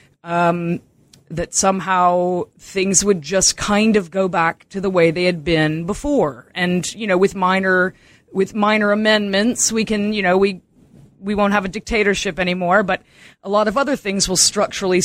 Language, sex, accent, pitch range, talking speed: English, female, American, 165-200 Hz, 175 wpm